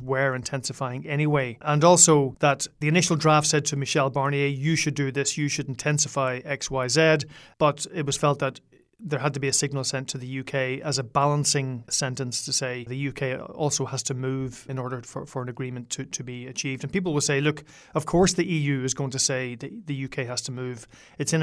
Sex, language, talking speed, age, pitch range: male, English, 225 wpm, 30-49, 135-150 Hz